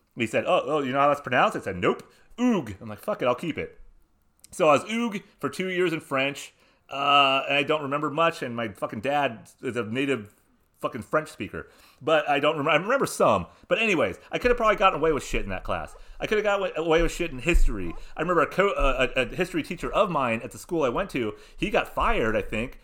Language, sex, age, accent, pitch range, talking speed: English, male, 30-49, American, 140-180 Hz, 250 wpm